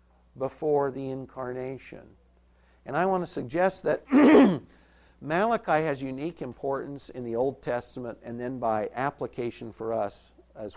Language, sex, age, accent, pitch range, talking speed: English, male, 60-79, American, 120-165 Hz, 135 wpm